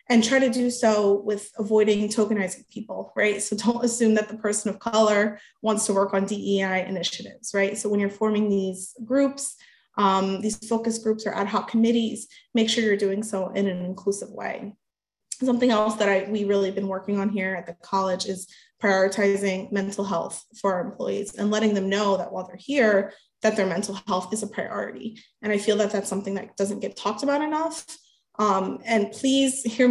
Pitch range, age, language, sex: 200-230 Hz, 20-39, English, female